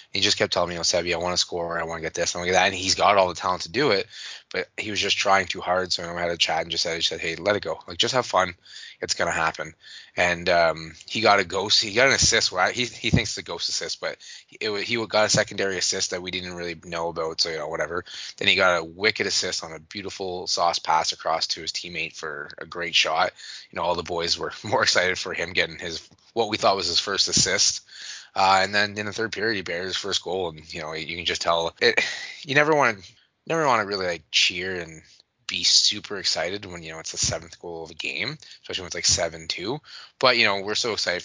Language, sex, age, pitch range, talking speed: English, male, 20-39, 85-100 Hz, 275 wpm